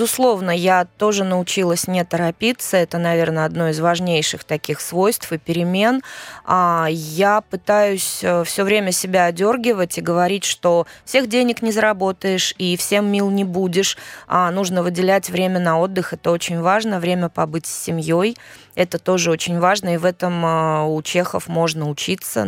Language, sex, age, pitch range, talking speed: Russian, female, 20-39, 170-200 Hz, 150 wpm